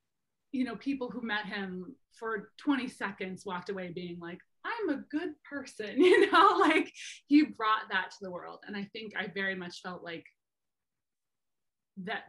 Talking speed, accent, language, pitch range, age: 170 wpm, American, English, 185-220 Hz, 30-49